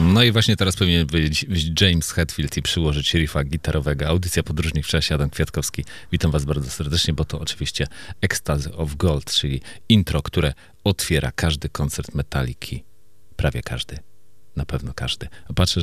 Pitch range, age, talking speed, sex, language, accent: 70-90 Hz, 40-59, 160 wpm, male, Polish, native